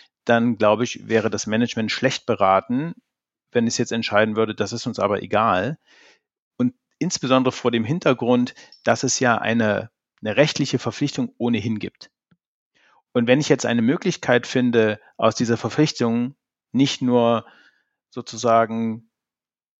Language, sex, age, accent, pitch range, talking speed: German, male, 40-59, German, 110-125 Hz, 135 wpm